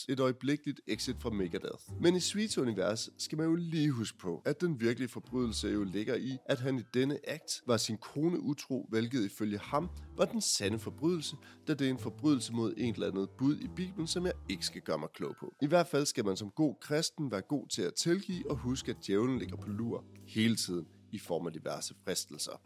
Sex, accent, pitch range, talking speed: male, native, 105-150 Hz, 225 wpm